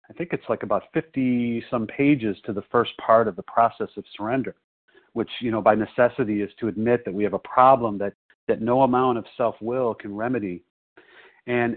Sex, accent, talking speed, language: male, American, 205 wpm, English